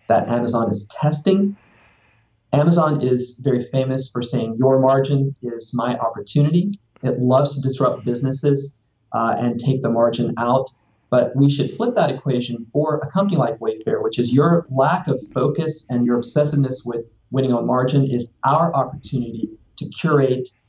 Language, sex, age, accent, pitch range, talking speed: English, male, 30-49, American, 120-140 Hz, 160 wpm